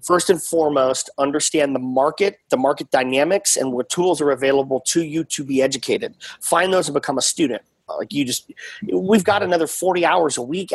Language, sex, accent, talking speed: English, male, American, 195 wpm